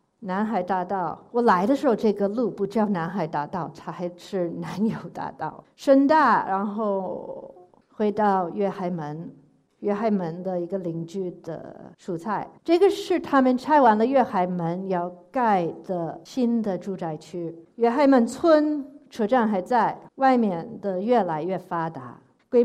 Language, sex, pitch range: Chinese, female, 185-270 Hz